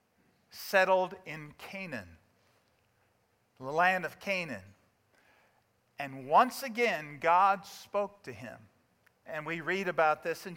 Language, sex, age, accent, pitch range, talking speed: English, male, 50-69, American, 150-205 Hz, 115 wpm